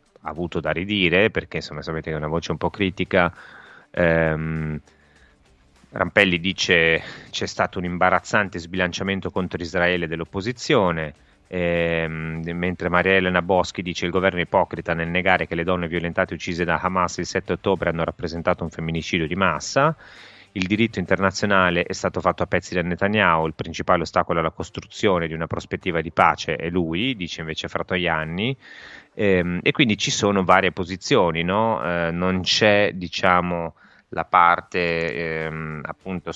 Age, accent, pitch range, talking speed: 30-49, native, 80-90 Hz, 155 wpm